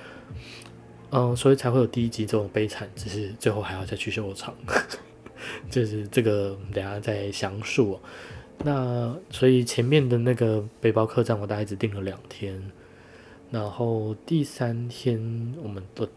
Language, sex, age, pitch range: Chinese, male, 20-39, 105-125 Hz